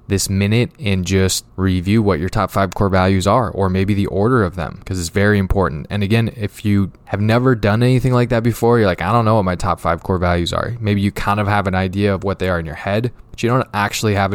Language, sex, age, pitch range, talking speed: English, male, 20-39, 95-110 Hz, 270 wpm